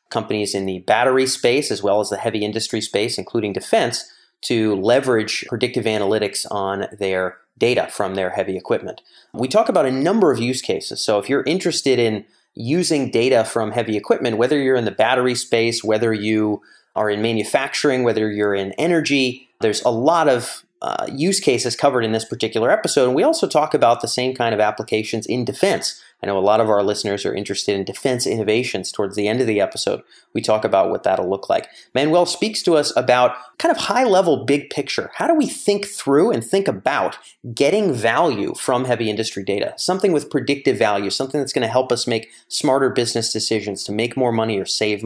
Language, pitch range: English, 105-130 Hz